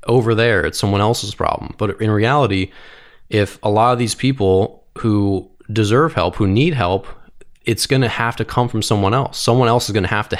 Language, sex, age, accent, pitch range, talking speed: English, male, 20-39, American, 95-125 Hz, 215 wpm